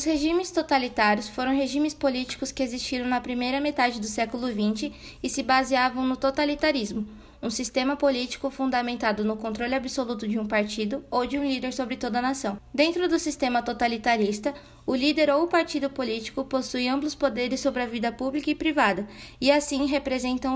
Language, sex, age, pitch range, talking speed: Portuguese, female, 20-39, 235-275 Hz, 170 wpm